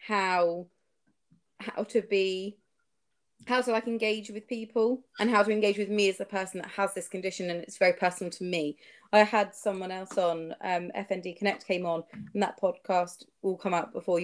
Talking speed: 195 wpm